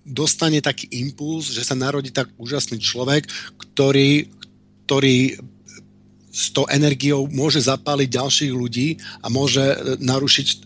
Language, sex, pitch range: Slovak, male, 115-140 Hz